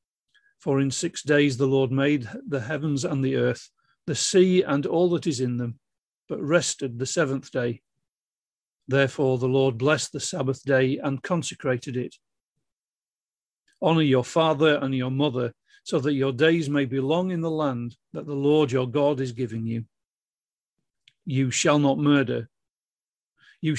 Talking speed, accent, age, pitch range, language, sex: 160 wpm, British, 40-59, 130-160 Hz, English, male